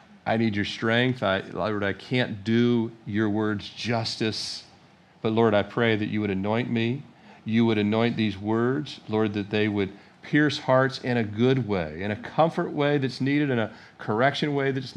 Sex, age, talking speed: male, 40-59, 185 wpm